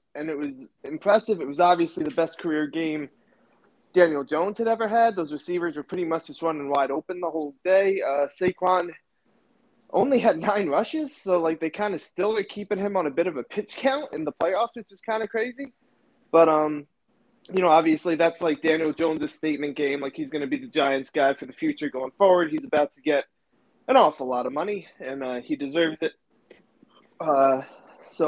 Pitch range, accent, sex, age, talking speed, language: 150-185 Hz, American, male, 20-39, 210 wpm, English